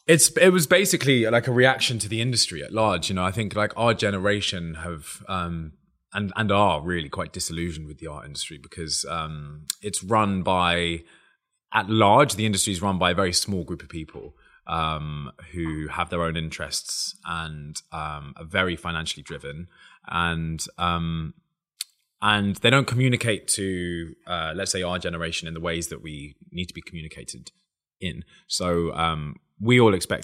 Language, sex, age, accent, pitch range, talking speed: English, male, 20-39, British, 80-105 Hz, 175 wpm